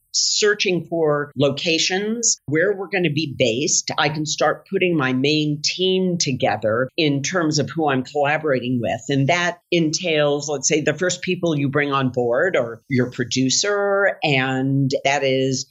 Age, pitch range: 50-69, 135-170 Hz